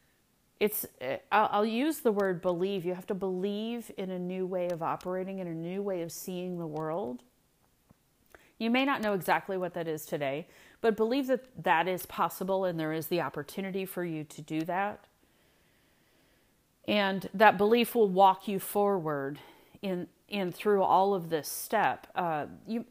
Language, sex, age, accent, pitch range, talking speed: English, female, 40-59, American, 170-210 Hz, 170 wpm